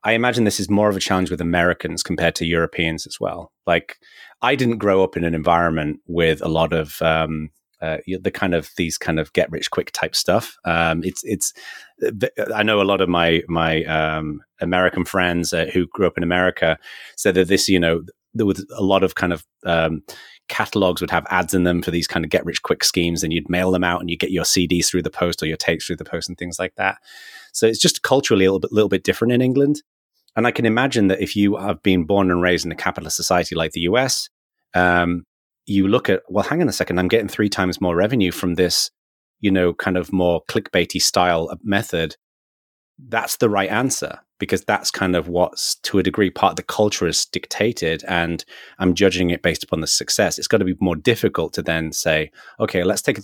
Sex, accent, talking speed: male, British, 230 wpm